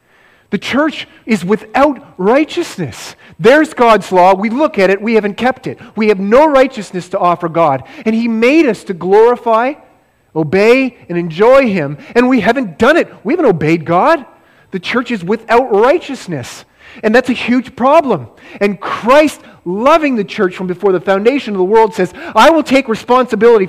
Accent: American